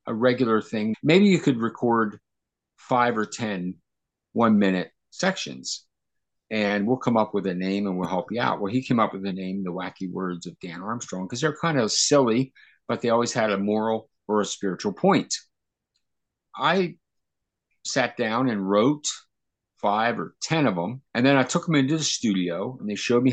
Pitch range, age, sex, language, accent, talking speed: 105-150 Hz, 50-69, male, English, American, 195 wpm